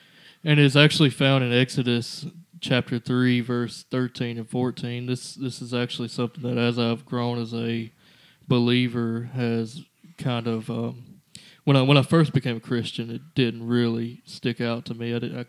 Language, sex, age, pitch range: English, male, 20-39, 120-135 Hz